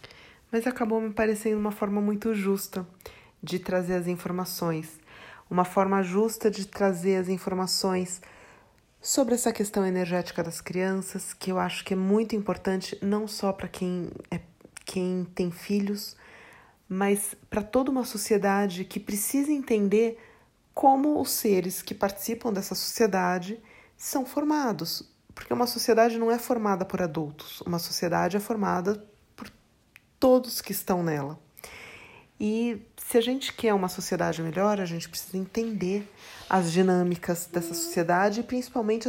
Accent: Brazilian